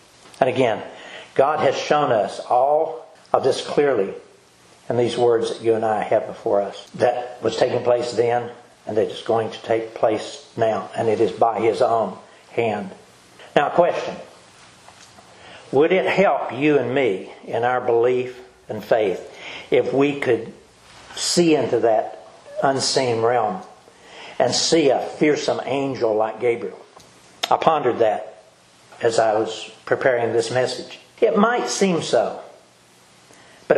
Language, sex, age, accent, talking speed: English, male, 60-79, American, 145 wpm